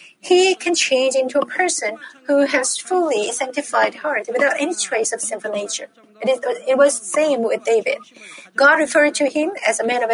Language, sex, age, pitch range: Korean, female, 40-59, 235-290 Hz